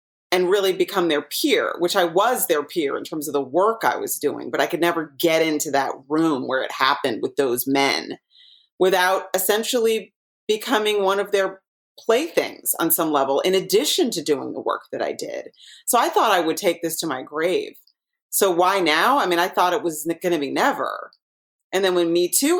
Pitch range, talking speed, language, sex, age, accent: 170-275 Hz, 210 wpm, English, female, 30-49, American